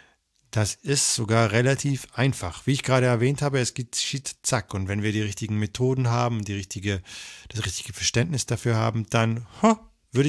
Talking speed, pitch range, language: 175 wpm, 95-120 Hz, German